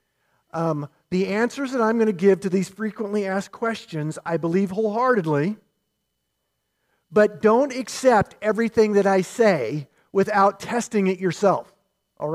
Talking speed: 135 wpm